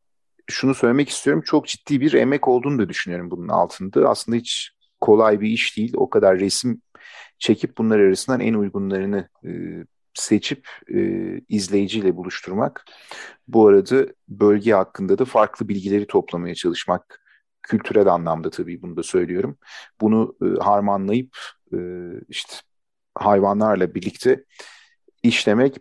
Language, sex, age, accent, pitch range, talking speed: Turkish, male, 40-59, native, 100-130 Hz, 130 wpm